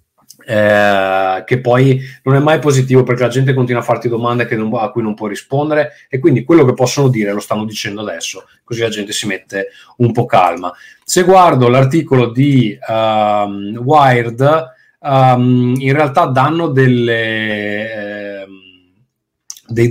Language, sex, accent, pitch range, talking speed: Italian, male, native, 105-130 Hz, 155 wpm